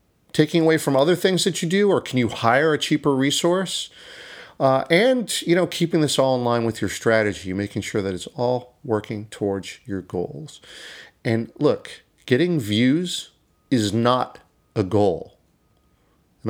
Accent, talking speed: American, 165 wpm